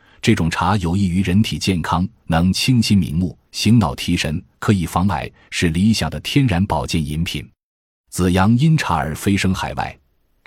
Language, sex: Chinese, male